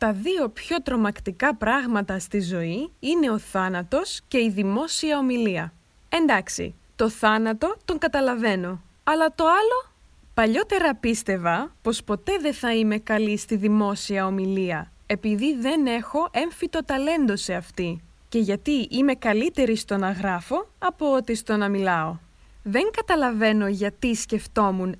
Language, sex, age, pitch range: Greek, female, 20-39, 205-275 Hz